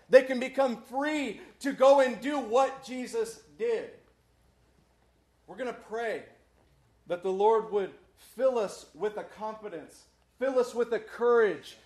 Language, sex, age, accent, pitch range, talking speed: English, male, 40-59, American, 220-295 Hz, 145 wpm